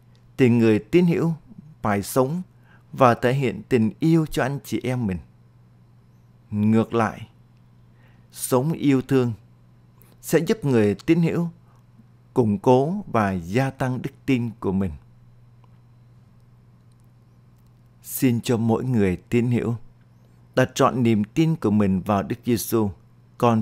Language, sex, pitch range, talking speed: Vietnamese, male, 110-130 Hz, 130 wpm